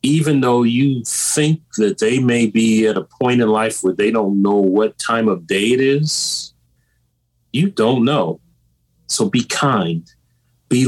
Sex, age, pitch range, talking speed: male, 30-49, 90-125 Hz, 165 wpm